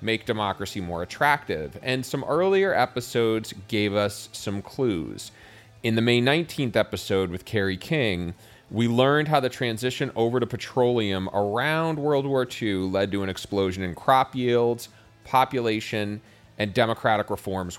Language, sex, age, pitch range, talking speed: English, male, 30-49, 100-125 Hz, 145 wpm